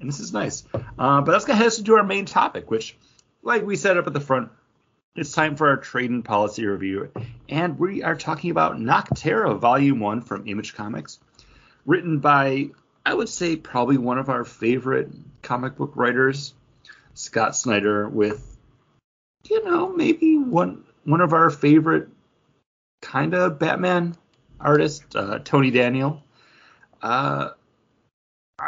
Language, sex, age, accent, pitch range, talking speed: English, male, 30-49, American, 110-155 Hz, 155 wpm